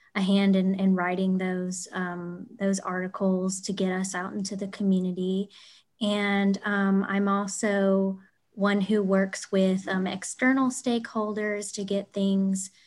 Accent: American